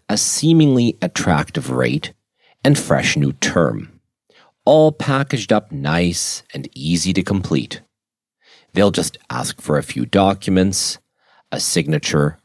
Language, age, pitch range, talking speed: English, 40-59, 80-110 Hz, 120 wpm